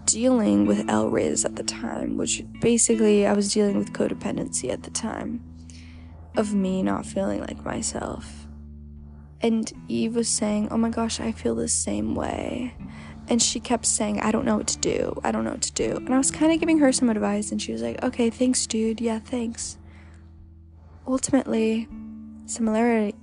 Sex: female